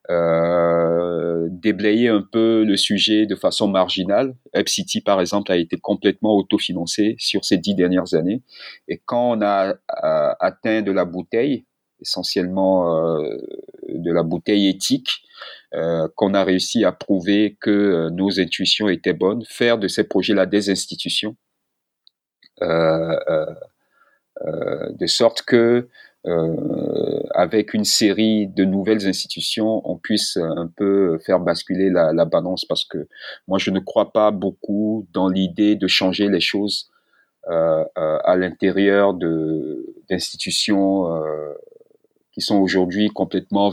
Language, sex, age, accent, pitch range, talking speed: French, male, 40-59, French, 90-110 Hz, 140 wpm